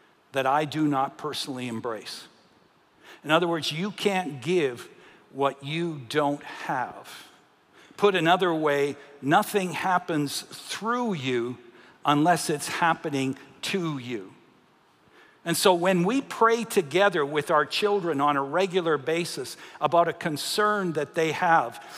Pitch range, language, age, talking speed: 155-200 Hz, English, 60-79, 130 wpm